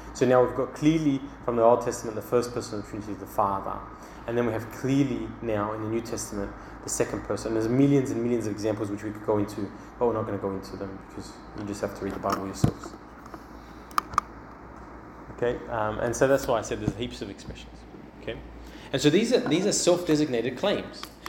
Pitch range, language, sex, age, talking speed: 115-150 Hz, English, male, 20-39, 225 wpm